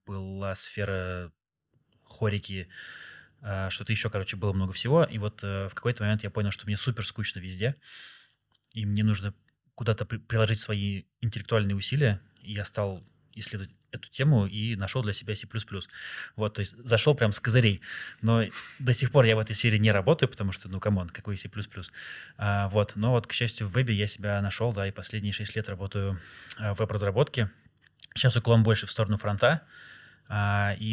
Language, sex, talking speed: Russian, male, 170 wpm